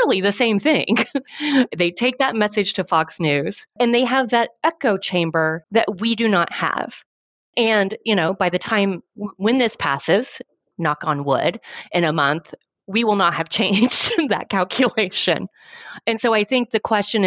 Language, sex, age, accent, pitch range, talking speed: English, female, 30-49, American, 155-200 Hz, 170 wpm